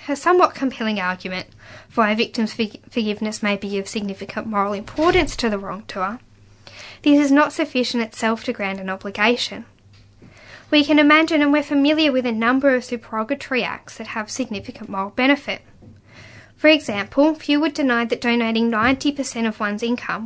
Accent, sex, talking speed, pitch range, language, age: Australian, female, 160 wpm, 200-265 Hz, English, 10-29